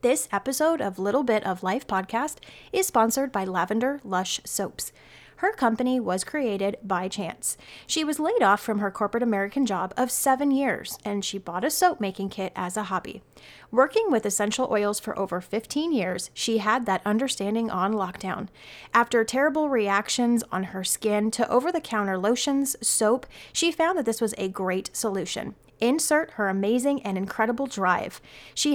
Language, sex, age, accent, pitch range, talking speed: English, female, 30-49, American, 200-275 Hz, 170 wpm